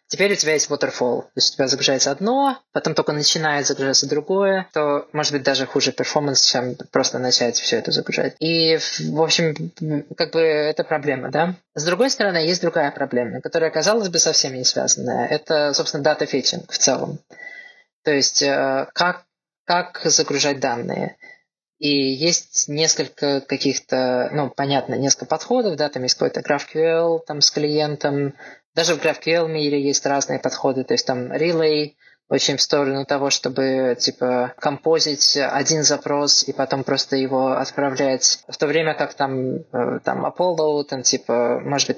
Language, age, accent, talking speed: Russian, 20-39, native, 160 wpm